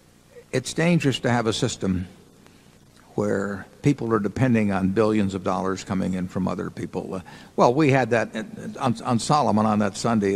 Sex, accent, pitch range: male, American, 100-115 Hz